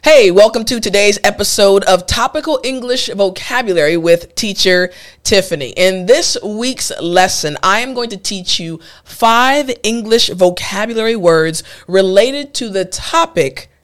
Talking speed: 130 wpm